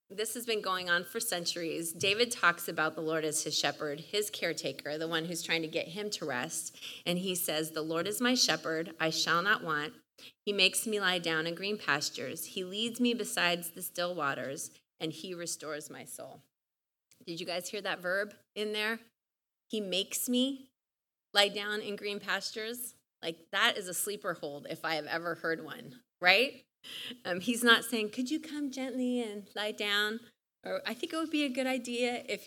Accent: American